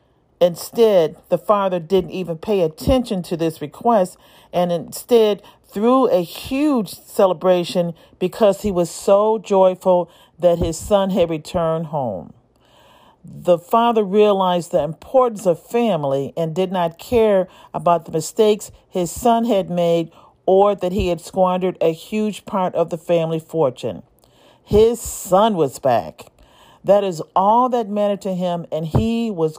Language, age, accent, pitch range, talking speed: English, 40-59, American, 170-210 Hz, 145 wpm